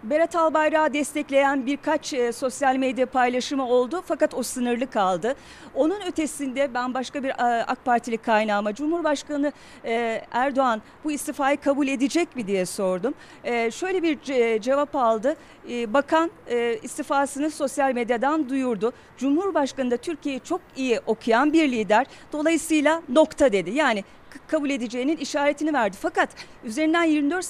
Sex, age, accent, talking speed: female, 40-59, native, 125 wpm